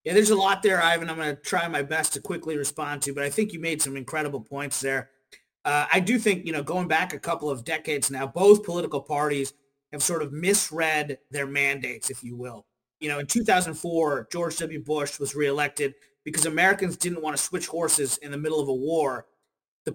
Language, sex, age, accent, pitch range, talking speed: English, male, 30-49, American, 145-190 Hz, 220 wpm